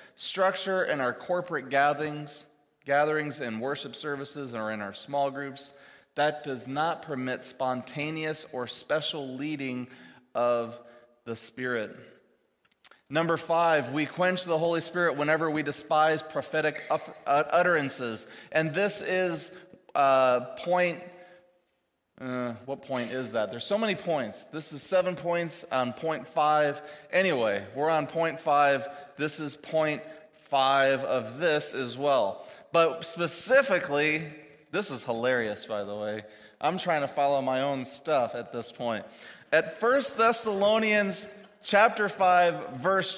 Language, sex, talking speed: English, male, 135 wpm